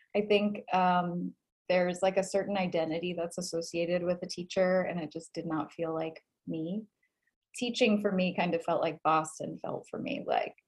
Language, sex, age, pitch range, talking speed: English, female, 30-49, 160-200 Hz, 185 wpm